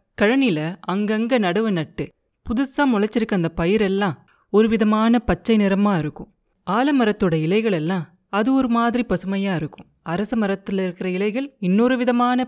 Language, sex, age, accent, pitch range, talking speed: Tamil, female, 30-49, native, 180-230 Hz, 115 wpm